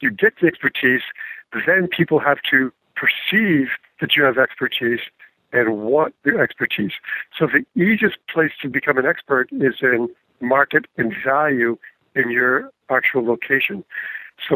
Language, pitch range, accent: English, 135-150 Hz, American